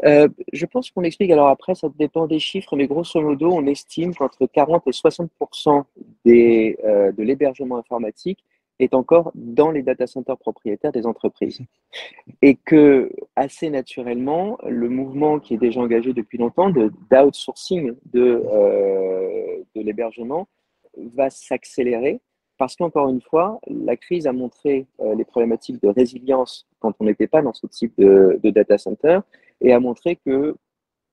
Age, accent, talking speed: 40-59, French, 160 wpm